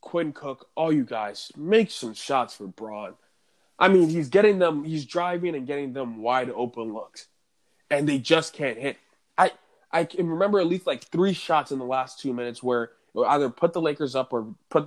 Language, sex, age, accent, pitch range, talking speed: English, male, 20-39, American, 120-155 Hz, 200 wpm